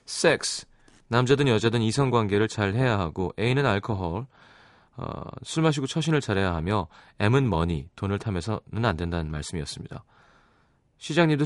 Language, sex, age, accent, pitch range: Korean, male, 30-49, native, 95-140 Hz